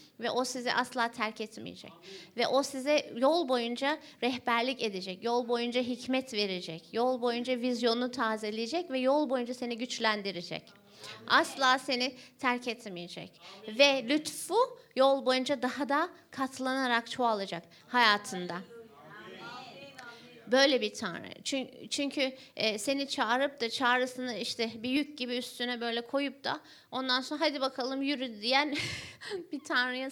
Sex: female